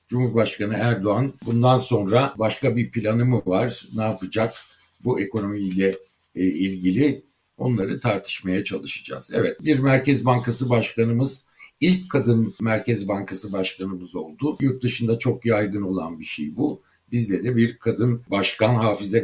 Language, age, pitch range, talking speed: Turkish, 60-79, 95-125 Hz, 130 wpm